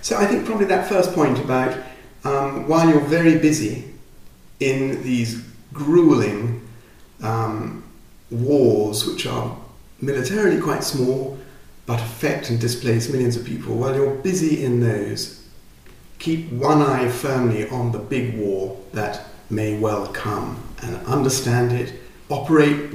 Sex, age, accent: male, 50-69, British